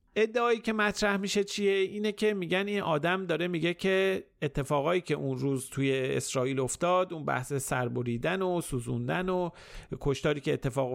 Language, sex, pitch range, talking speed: Persian, male, 135-180 Hz, 160 wpm